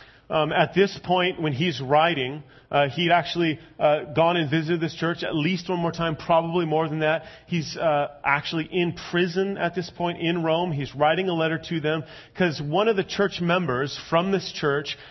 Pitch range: 145-175 Hz